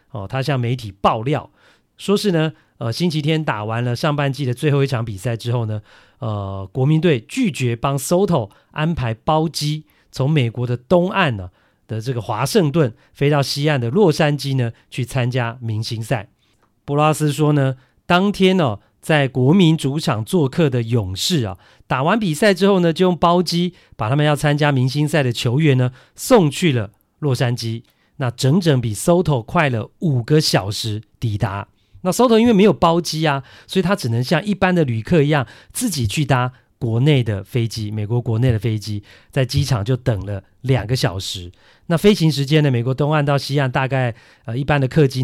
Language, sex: Chinese, male